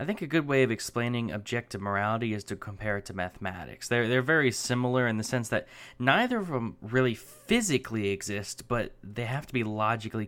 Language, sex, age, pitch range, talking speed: English, male, 10-29, 105-130 Hz, 205 wpm